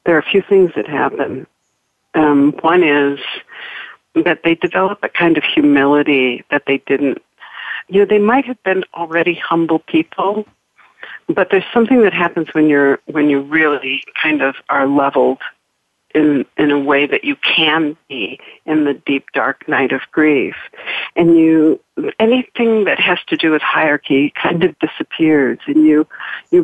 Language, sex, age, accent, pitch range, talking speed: English, female, 60-79, American, 150-220 Hz, 165 wpm